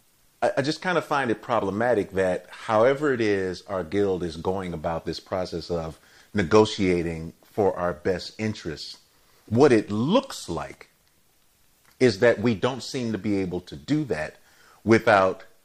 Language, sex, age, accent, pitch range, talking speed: English, male, 30-49, American, 85-105 Hz, 155 wpm